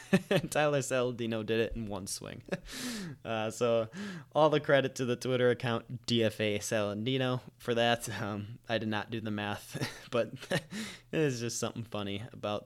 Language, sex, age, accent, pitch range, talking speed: English, male, 20-39, American, 115-140 Hz, 155 wpm